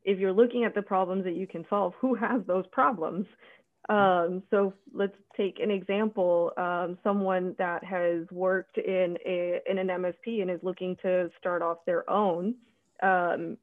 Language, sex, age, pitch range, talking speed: English, female, 20-39, 180-210 Hz, 170 wpm